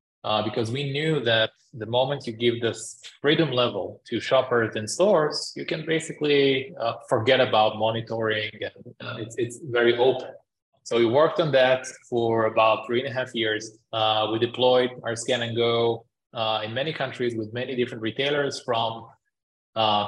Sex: male